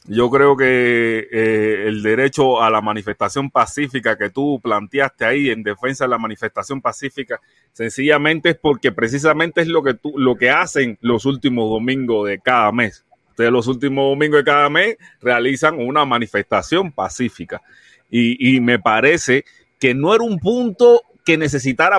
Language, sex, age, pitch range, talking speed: Spanish, male, 30-49, 120-160 Hz, 160 wpm